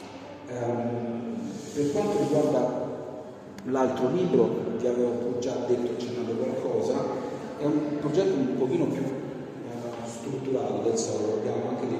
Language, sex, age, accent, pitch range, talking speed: Italian, male, 40-59, native, 105-130 Hz, 125 wpm